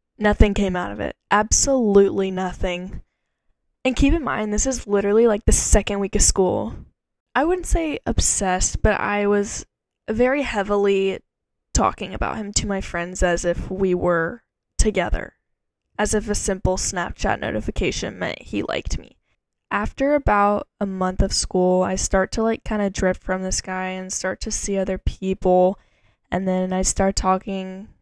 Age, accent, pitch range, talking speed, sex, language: 10-29, American, 185-215 Hz, 165 wpm, female, English